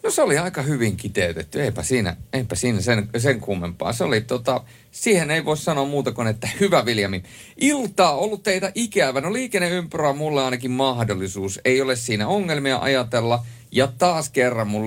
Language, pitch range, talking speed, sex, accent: Finnish, 100-135 Hz, 180 wpm, male, native